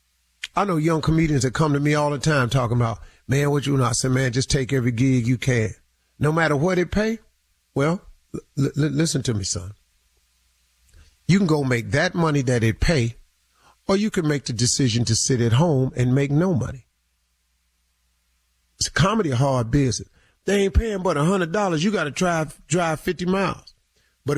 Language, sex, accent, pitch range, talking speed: English, male, American, 115-160 Hz, 195 wpm